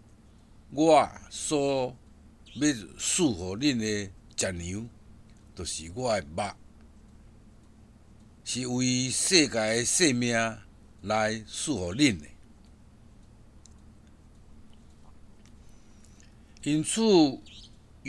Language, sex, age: Chinese, male, 60-79